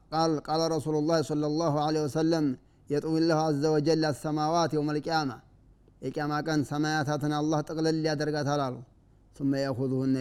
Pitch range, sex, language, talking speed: 130-155 Hz, male, Amharic, 135 wpm